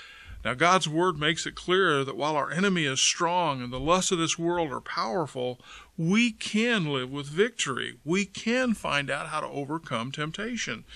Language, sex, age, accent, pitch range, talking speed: English, male, 50-69, American, 140-185 Hz, 180 wpm